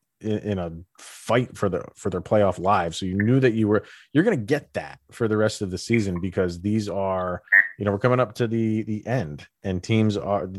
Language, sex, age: English, male, 30-49